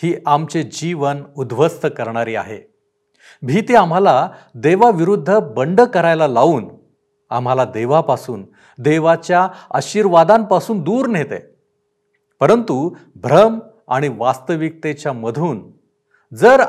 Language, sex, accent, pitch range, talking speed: Marathi, male, native, 130-205 Hz, 85 wpm